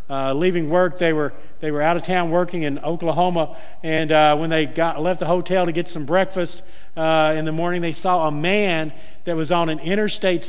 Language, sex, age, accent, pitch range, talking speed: English, male, 50-69, American, 150-190 Hz, 215 wpm